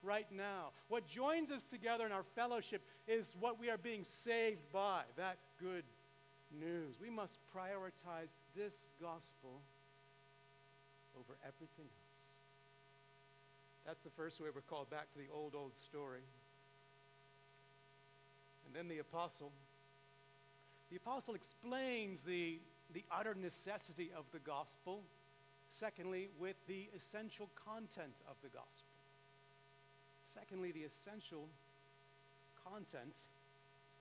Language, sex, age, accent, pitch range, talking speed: English, male, 70-89, American, 135-205 Hz, 115 wpm